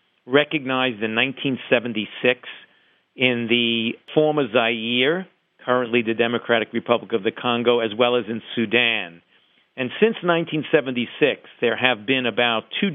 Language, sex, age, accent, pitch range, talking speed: English, male, 50-69, American, 115-140 Hz, 125 wpm